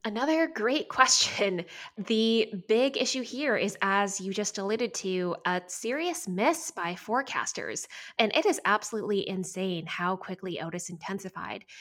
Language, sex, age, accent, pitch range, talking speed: English, female, 20-39, American, 185-220 Hz, 135 wpm